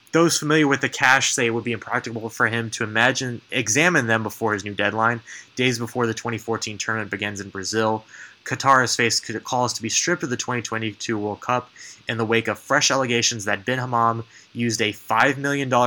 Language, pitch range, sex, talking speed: English, 110-125 Hz, male, 200 wpm